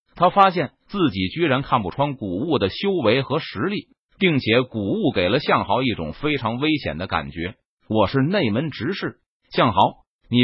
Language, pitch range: Chinese, 110-170 Hz